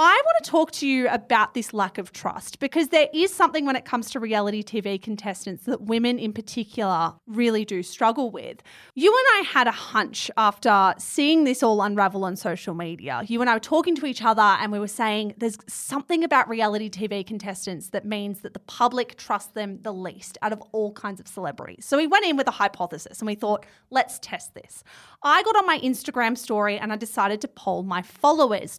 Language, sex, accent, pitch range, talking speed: English, female, Australian, 205-285 Hz, 215 wpm